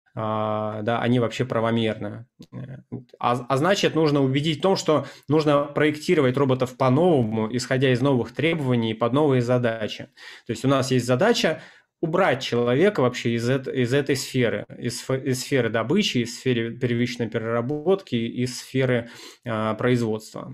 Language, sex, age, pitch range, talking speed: Russian, male, 20-39, 115-135 Hz, 145 wpm